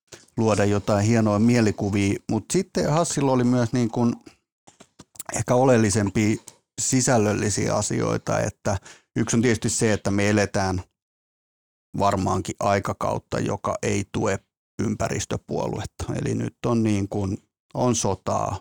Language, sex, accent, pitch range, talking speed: Finnish, male, native, 100-120 Hz, 115 wpm